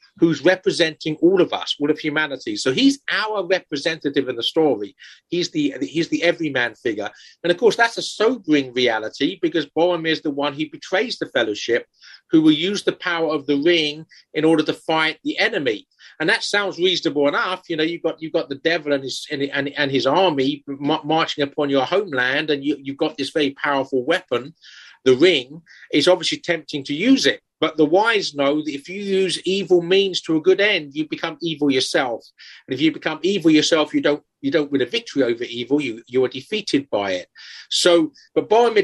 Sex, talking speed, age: male, 205 wpm, 40-59